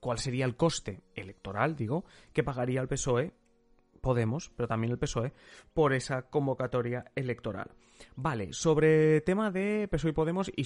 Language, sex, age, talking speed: Spanish, male, 30-49, 160 wpm